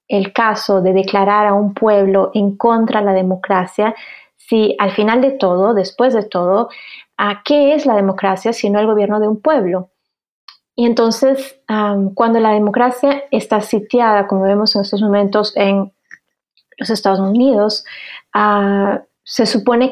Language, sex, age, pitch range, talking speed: Spanish, female, 20-39, 195-240 Hz, 155 wpm